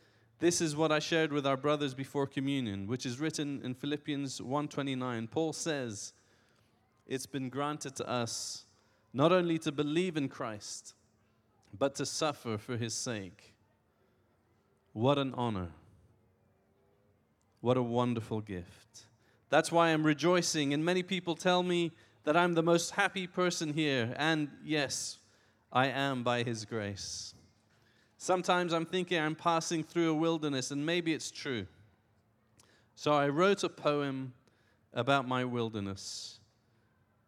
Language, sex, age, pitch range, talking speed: English, male, 20-39, 110-155 Hz, 135 wpm